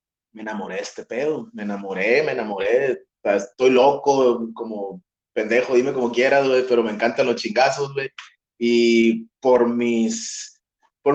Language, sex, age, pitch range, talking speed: Spanish, male, 30-49, 115-180 Hz, 155 wpm